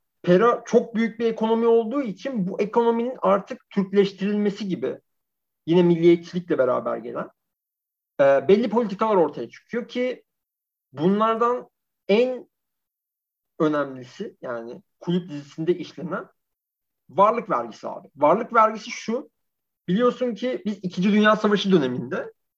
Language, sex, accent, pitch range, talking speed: Turkish, male, native, 180-240 Hz, 110 wpm